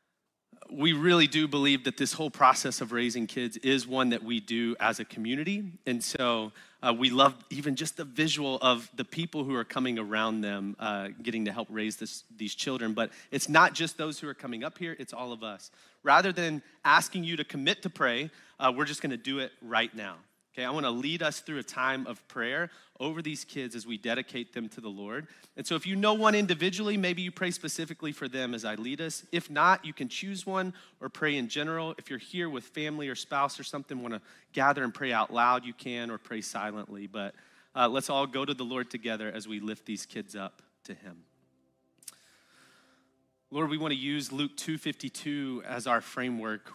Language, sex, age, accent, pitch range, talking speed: English, male, 30-49, American, 115-155 Hz, 215 wpm